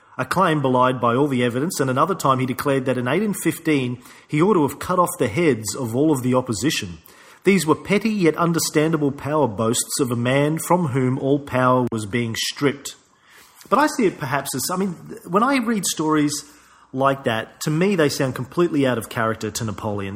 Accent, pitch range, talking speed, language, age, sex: Australian, 115-150 Hz, 205 wpm, English, 40-59, male